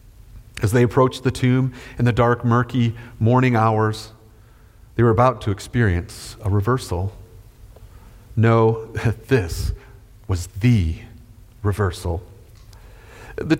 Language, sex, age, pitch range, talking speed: English, male, 40-59, 100-125 Hz, 105 wpm